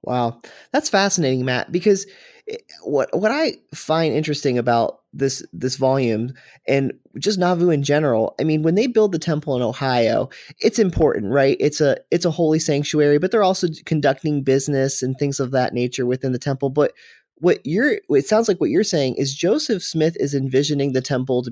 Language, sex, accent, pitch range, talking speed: English, male, American, 125-165 Hz, 180 wpm